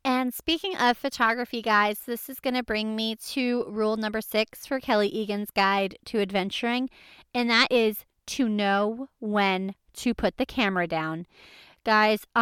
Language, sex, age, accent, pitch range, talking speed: English, female, 30-49, American, 195-245 Hz, 160 wpm